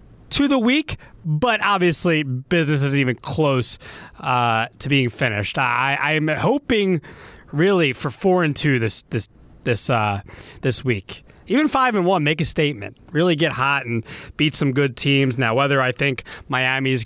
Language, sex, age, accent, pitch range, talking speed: English, male, 30-49, American, 130-165 Hz, 165 wpm